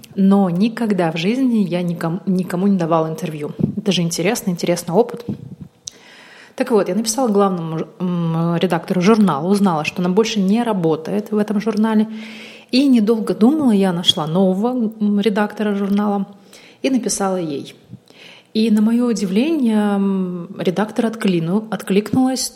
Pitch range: 180-210 Hz